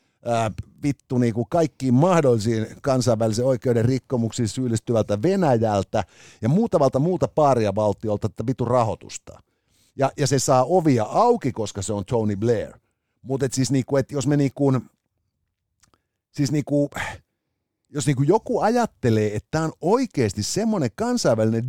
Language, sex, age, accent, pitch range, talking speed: Finnish, male, 50-69, native, 110-145 Hz, 145 wpm